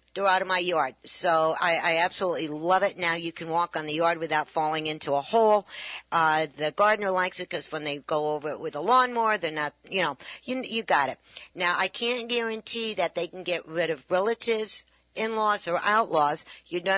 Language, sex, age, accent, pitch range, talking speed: English, female, 60-79, American, 165-215 Hz, 215 wpm